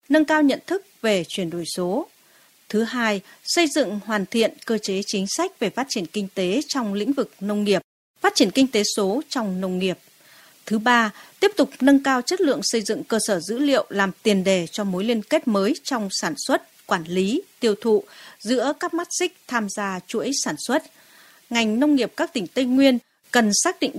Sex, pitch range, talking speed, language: female, 195-280 Hz, 210 wpm, Vietnamese